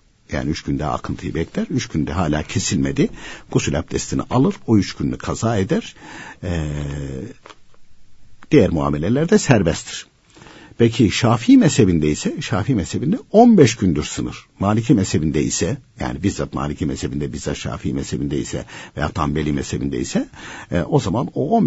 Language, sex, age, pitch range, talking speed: Turkish, male, 60-79, 75-115 Hz, 145 wpm